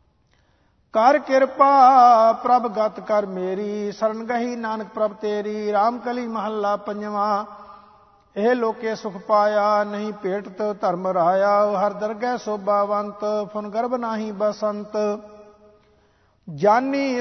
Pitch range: 205-225 Hz